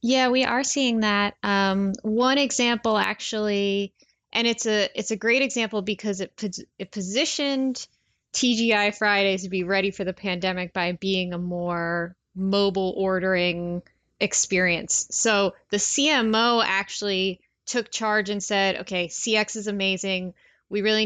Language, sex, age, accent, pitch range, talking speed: English, female, 10-29, American, 185-215 Hz, 140 wpm